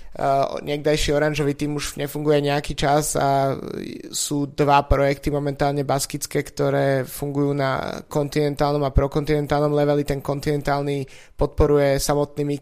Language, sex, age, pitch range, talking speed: Slovak, male, 20-39, 140-150 Hz, 120 wpm